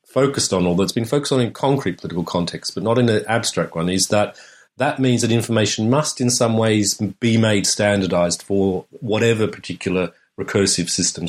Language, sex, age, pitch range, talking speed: English, male, 40-59, 90-110 Hz, 185 wpm